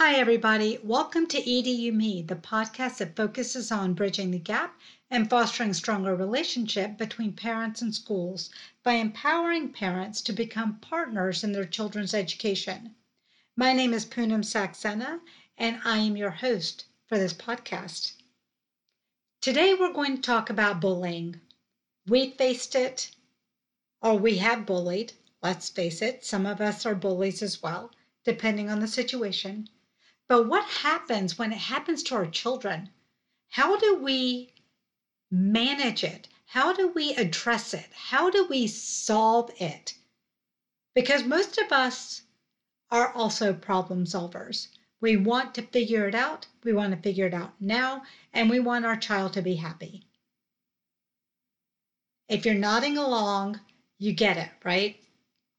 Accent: American